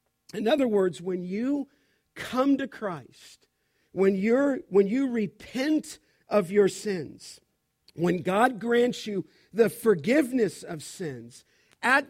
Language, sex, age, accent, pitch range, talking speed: English, male, 50-69, American, 180-235 Hz, 125 wpm